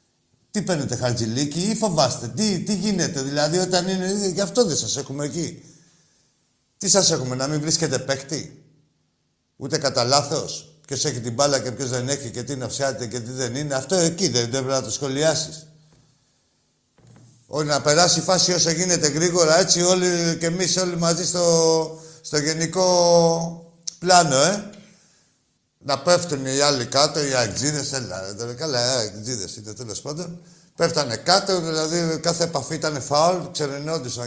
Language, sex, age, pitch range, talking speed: Greek, male, 50-69, 135-175 Hz, 170 wpm